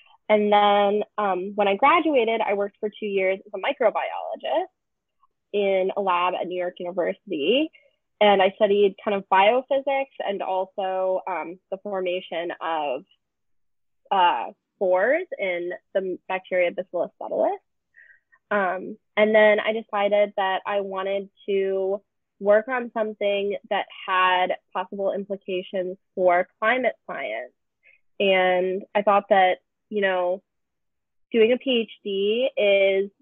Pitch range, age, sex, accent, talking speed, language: 185-225 Hz, 20-39, female, American, 125 wpm, English